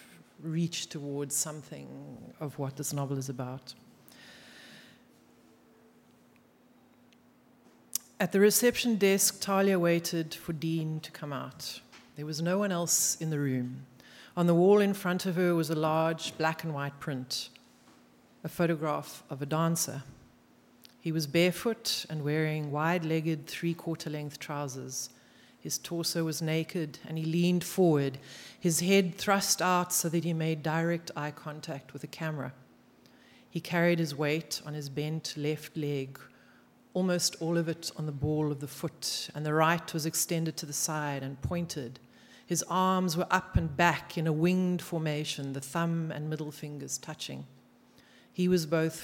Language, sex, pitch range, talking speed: English, female, 145-170 Hz, 155 wpm